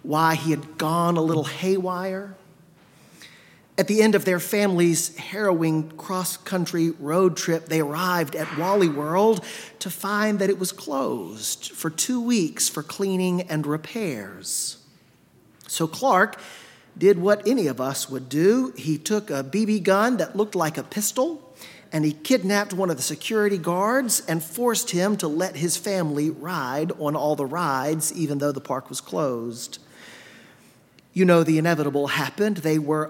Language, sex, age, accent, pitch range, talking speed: English, male, 40-59, American, 155-210 Hz, 160 wpm